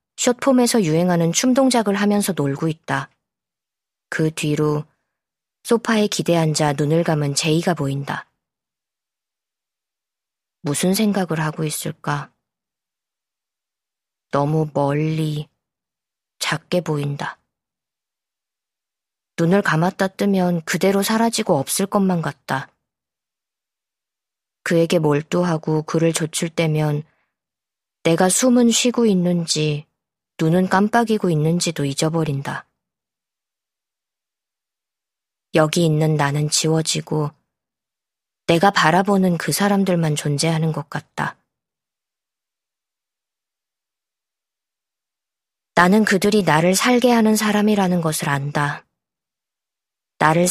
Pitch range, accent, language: 150-195 Hz, native, Korean